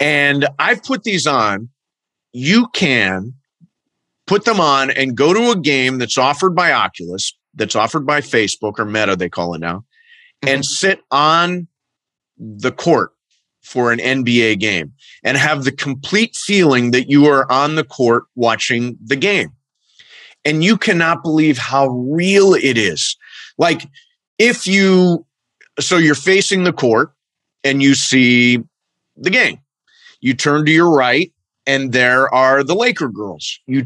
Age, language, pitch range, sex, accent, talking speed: 30-49, English, 125-175 Hz, male, American, 150 wpm